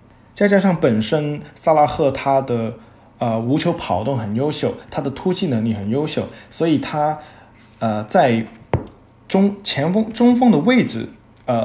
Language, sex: Chinese, male